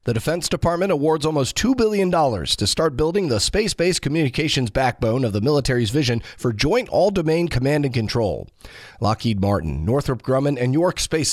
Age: 40-59